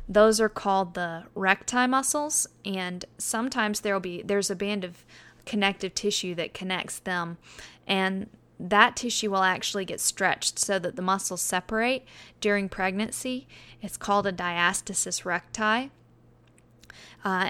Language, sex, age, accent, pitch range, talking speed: English, female, 10-29, American, 185-210 Hz, 135 wpm